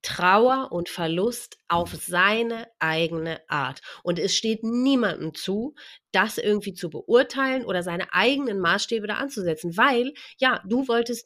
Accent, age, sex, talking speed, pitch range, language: German, 30-49, female, 140 wpm, 175-240 Hz, German